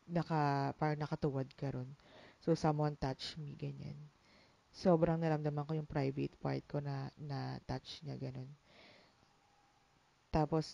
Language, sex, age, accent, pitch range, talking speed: English, female, 20-39, Filipino, 140-165 Hz, 130 wpm